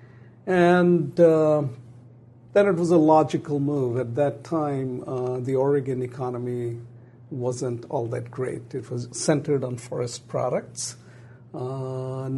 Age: 50-69